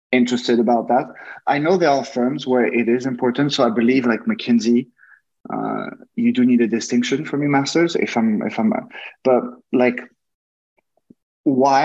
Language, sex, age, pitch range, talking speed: English, male, 20-39, 110-130 Hz, 170 wpm